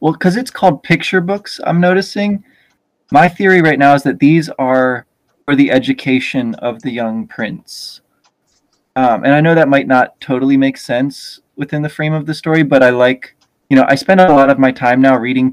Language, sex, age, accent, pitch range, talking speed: English, male, 20-39, American, 125-155 Hz, 205 wpm